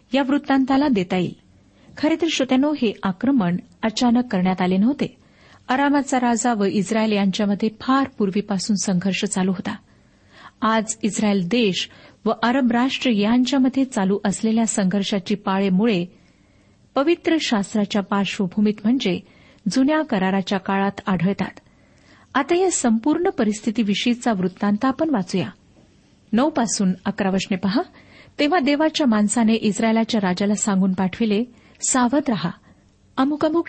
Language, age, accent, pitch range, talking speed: Marathi, 50-69, native, 200-265 Hz, 110 wpm